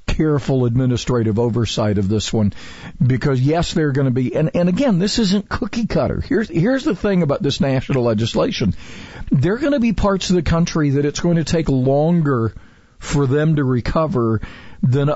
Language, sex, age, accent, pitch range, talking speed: English, male, 50-69, American, 120-150 Hz, 185 wpm